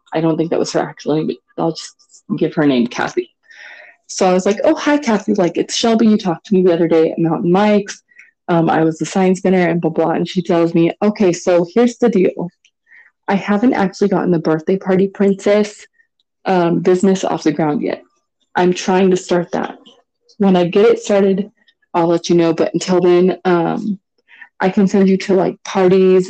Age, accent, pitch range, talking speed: 20-39, American, 175-235 Hz, 210 wpm